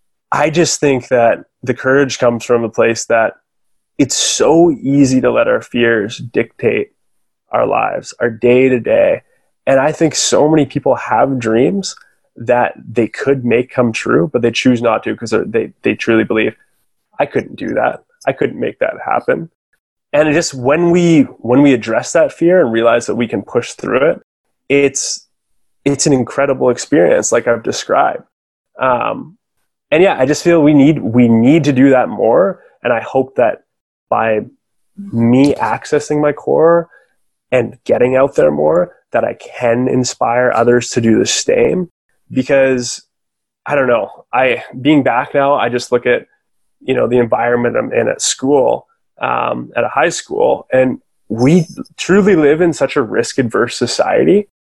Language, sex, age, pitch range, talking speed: English, male, 20-39, 120-155 Hz, 170 wpm